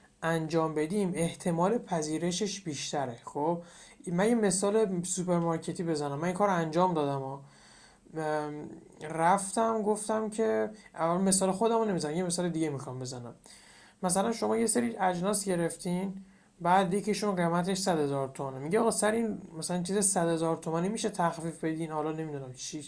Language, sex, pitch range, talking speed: Persian, male, 155-195 Hz, 145 wpm